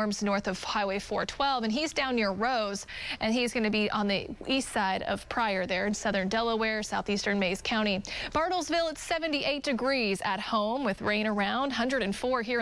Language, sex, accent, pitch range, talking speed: English, female, American, 210-255 Hz, 175 wpm